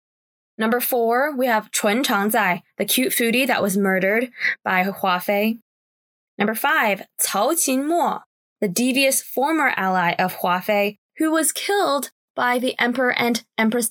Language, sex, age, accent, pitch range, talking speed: English, female, 10-29, American, 190-255 Hz, 145 wpm